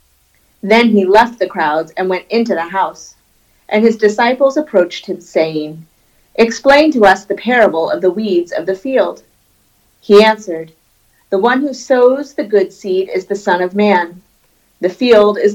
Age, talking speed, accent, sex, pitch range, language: 30-49, 170 wpm, American, female, 175-230 Hz, English